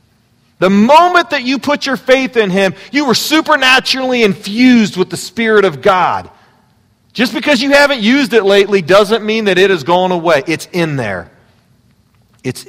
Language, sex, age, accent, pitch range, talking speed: English, male, 40-59, American, 155-245 Hz, 170 wpm